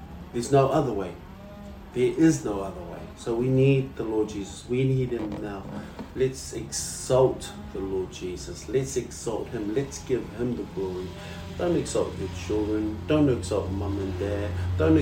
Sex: male